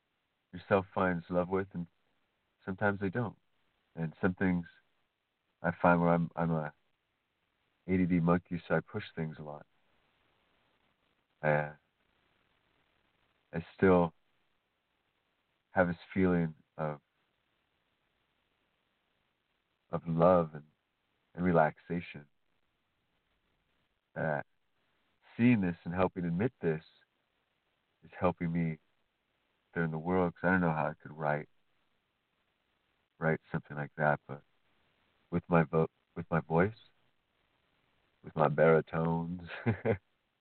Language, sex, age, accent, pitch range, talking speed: English, male, 50-69, American, 80-95 Hz, 110 wpm